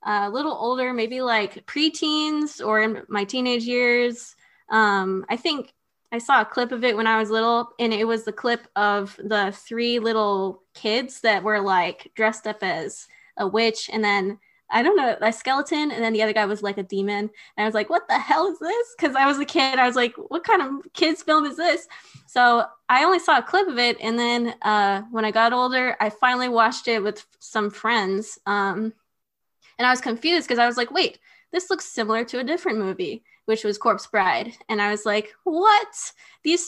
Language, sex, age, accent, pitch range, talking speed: English, female, 20-39, American, 210-270 Hz, 215 wpm